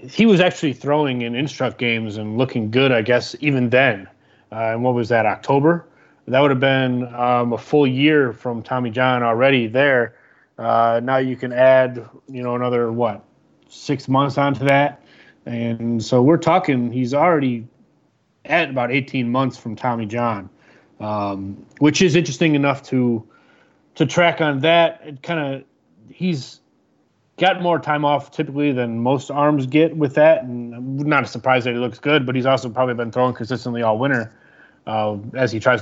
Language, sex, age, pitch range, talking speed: English, male, 30-49, 120-145 Hz, 180 wpm